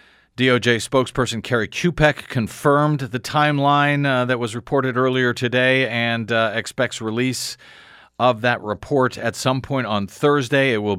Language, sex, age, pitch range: English, male, 40-59, 115-140 Hz